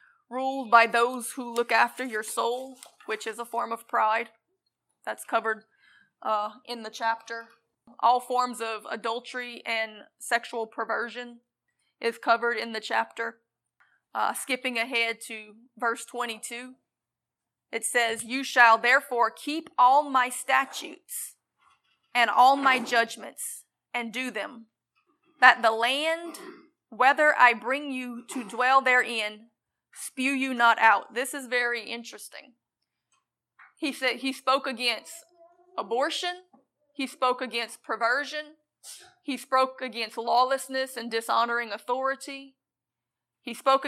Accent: American